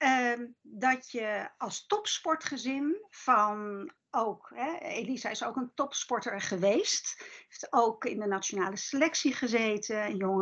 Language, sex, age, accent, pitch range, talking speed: Dutch, female, 60-79, Dutch, 240-310 Hz, 125 wpm